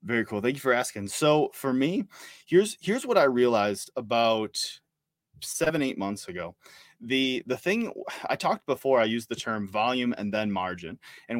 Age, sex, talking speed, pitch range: 20-39, male, 180 wpm, 105-125 Hz